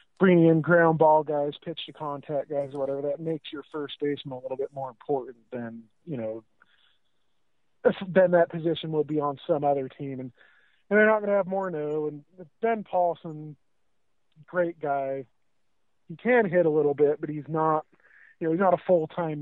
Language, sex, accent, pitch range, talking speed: English, male, American, 140-175 Hz, 190 wpm